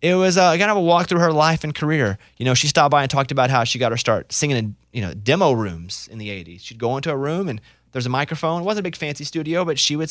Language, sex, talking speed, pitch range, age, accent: English, male, 305 wpm, 110-145 Hz, 30-49, American